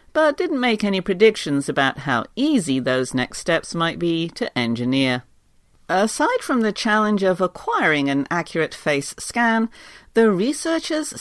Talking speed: 145 wpm